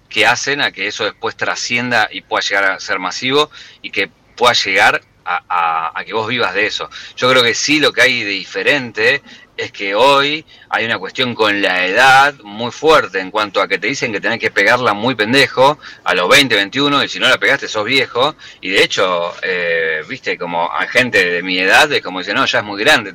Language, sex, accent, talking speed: Spanish, male, Argentinian, 225 wpm